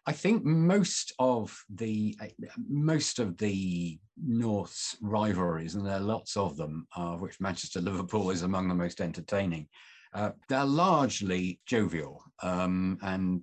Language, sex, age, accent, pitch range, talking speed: English, male, 50-69, British, 90-105 Hz, 145 wpm